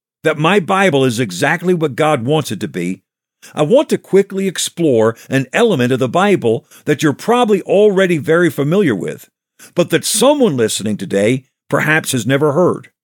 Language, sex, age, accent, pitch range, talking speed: English, male, 50-69, American, 135-175 Hz, 170 wpm